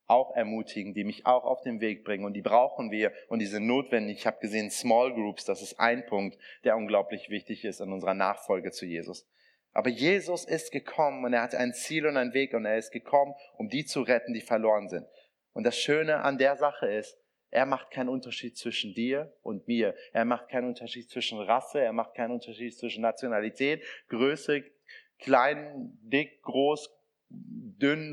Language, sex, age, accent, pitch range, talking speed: German, male, 30-49, German, 115-140 Hz, 195 wpm